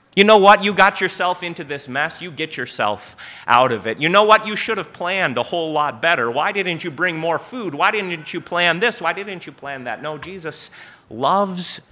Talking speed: 225 wpm